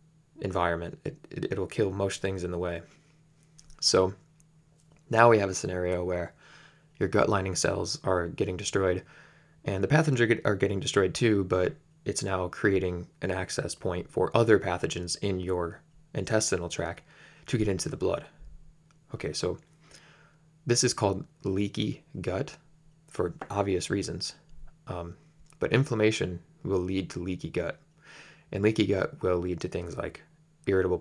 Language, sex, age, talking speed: English, male, 20-39, 155 wpm